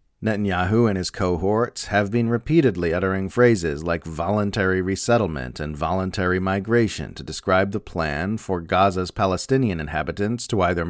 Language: English